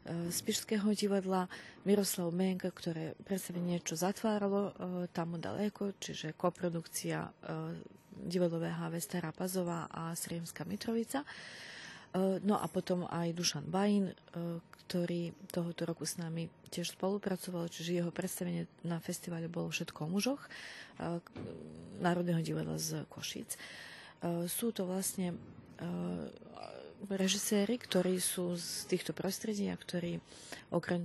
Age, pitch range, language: 30-49, 170-195 Hz, Slovak